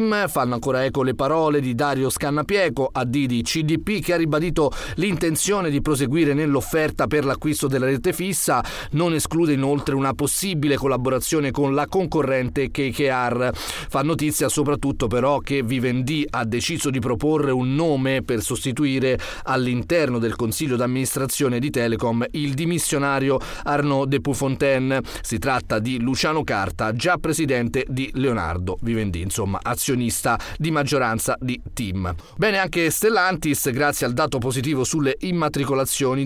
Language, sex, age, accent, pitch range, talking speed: Italian, male, 30-49, native, 130-165 Hz, 135 wpm